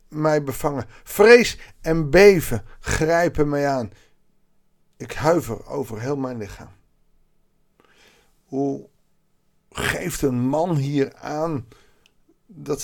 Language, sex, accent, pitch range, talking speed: Dutch, male, Dutch, 120-195 Hz, 100 wpm